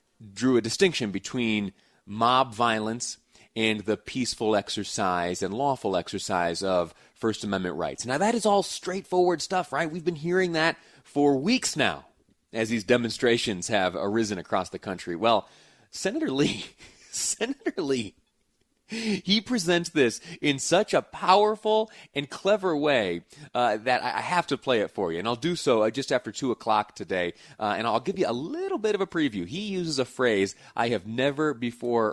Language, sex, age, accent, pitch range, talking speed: English, male, 30-49, American, 105-155 Hz, 170 wpm